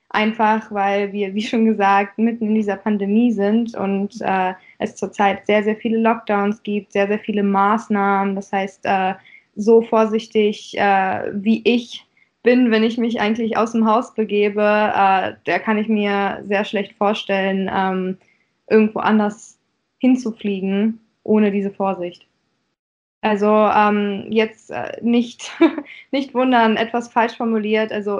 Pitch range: 200-225 Hz